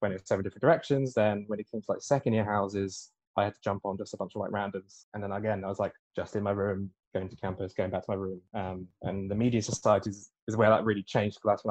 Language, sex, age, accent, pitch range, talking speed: English, male, 10-29, British, 95-110 Hz, 280 wpm